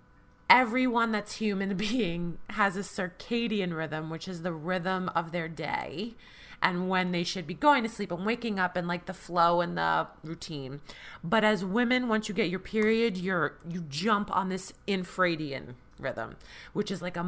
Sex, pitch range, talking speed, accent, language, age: female, 180-225 Hz, 180 wpm, American, English, 30-49